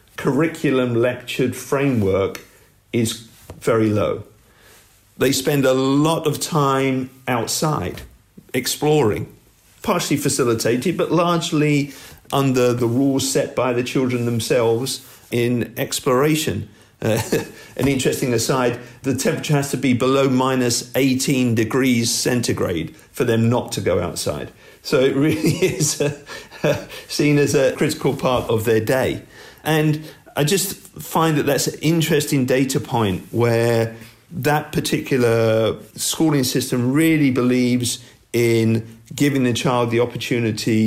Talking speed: 120 wpm